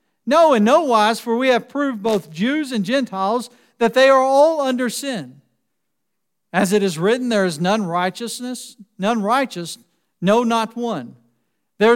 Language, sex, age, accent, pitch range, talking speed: English, male, 50-69, American, 205-270 Hz, 160 wpm